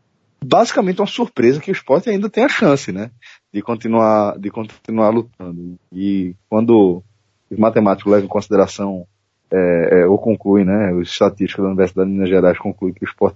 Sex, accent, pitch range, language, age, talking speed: male, Brazilian, 95-115 Hz, Portuguese, 20-39, 175 wpm